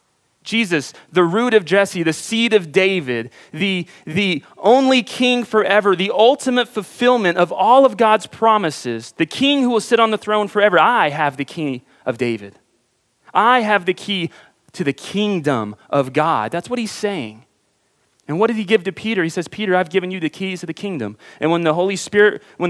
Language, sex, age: English, male, 30-49